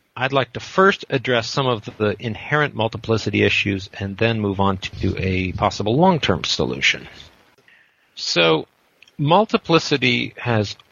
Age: 50-69